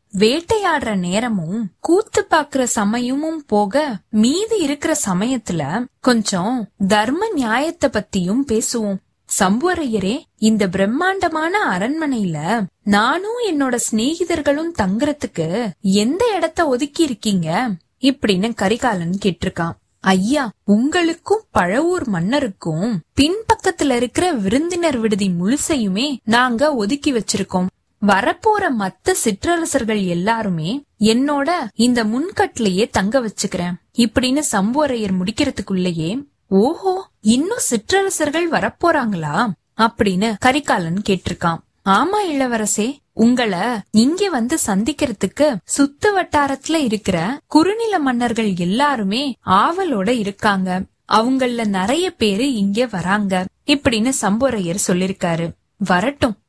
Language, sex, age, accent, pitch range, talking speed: Tamil, female, 20-39, native, 200-295 Hz, 90 wpm